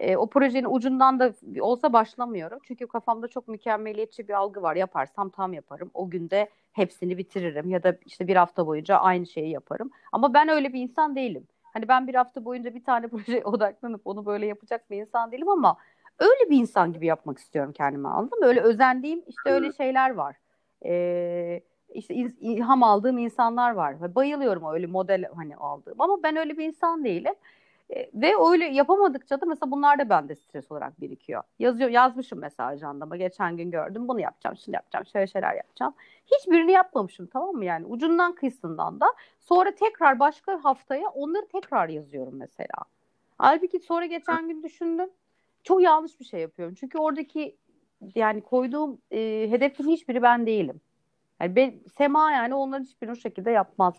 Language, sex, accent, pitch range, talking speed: Turkish, female, native, 190-295 Hz, 170 wpm